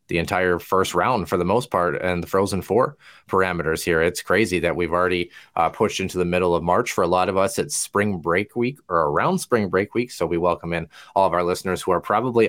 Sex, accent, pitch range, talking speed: male, American, 85-110 Hz, 245 wpm